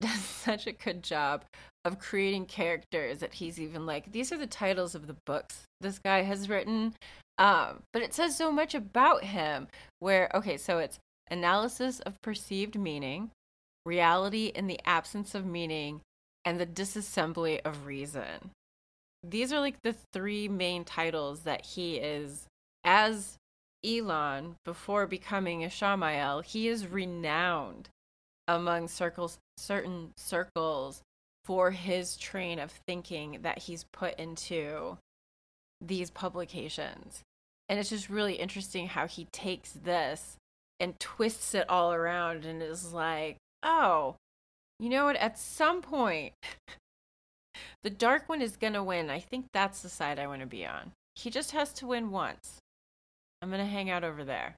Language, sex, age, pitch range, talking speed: English, female, 30-49, 160-210 Hz, 150 wpm